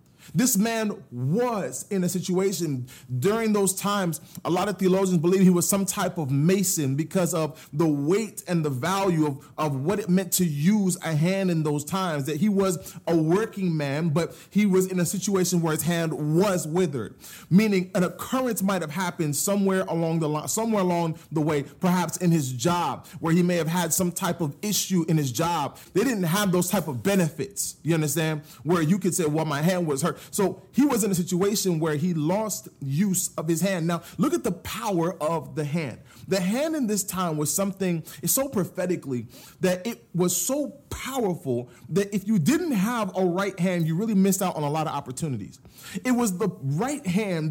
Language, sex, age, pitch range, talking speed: English, male, 30-49, 160-195 Hz, 200 wpm